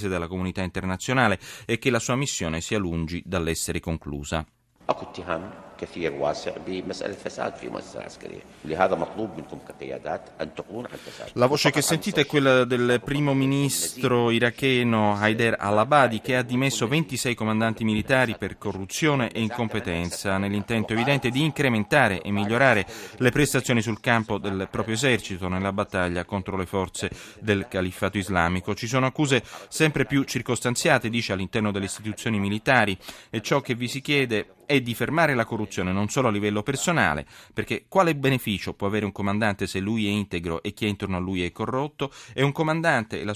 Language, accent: Italian, native